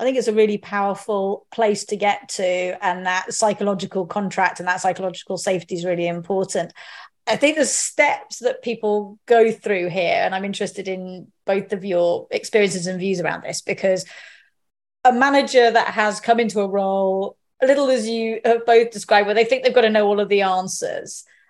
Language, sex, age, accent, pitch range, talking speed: English, female, 30-49, British, 195-245 Hz, 195 wpm